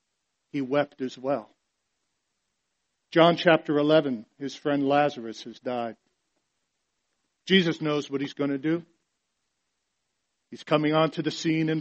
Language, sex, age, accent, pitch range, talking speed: English, male, 50-69, American, 155-215 Hz, 125 wpm